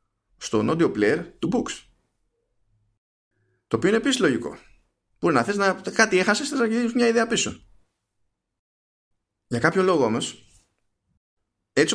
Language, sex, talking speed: Greek, male, 130 wpm